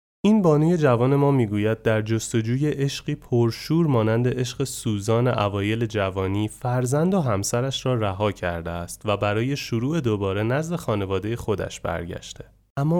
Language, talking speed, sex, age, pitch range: Persian, 140 wpm, male, 30-49, 105-150 Hz